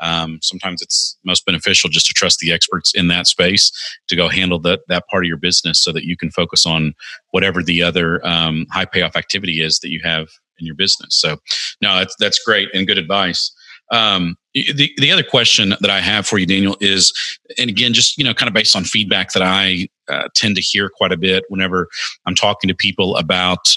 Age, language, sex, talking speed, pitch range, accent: 40-59, English, male, 220 wpm, 90-105 Hz, American